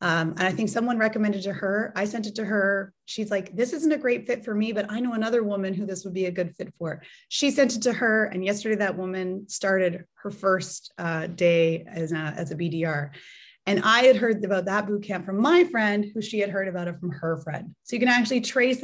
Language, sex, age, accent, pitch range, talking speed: English, female, 30-49, American, 180-215 Hz, 245 wpm